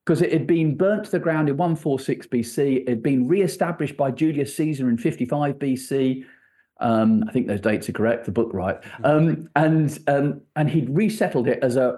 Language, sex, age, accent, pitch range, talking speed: English, male, 40-59, British, 130-180 Hz, 200 wpm